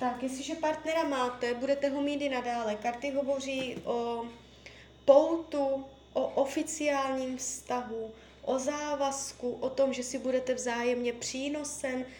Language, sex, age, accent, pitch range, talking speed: Czech, female, 20-39, native, 245-285 Hz, 125 wpm